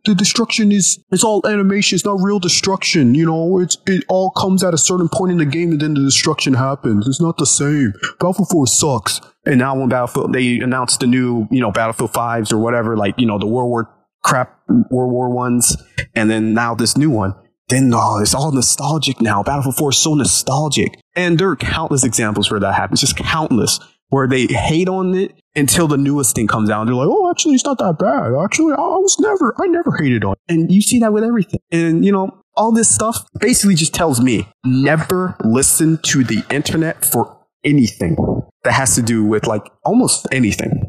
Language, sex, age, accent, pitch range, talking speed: English, male, 20-39, American, 125-190 Hz, 215 wpm